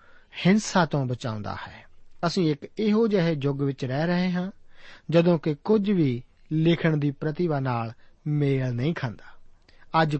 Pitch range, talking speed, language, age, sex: 140-185 Hz, 145 wpm, Punjabi, 50-69, male